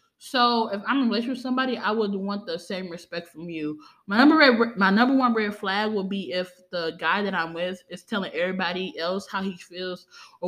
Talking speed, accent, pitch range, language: 210 wpm, American, 175-225 Hz, English